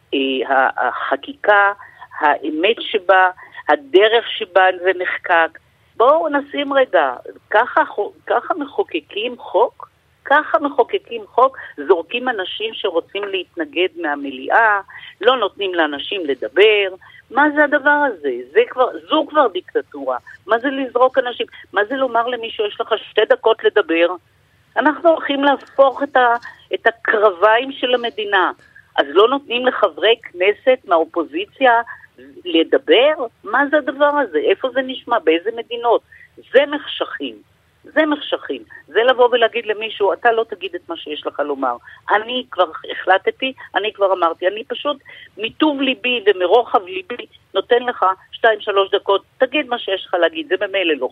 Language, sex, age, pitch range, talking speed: Hebrew, female, 50-69, 200-300 Hz, 135 wpm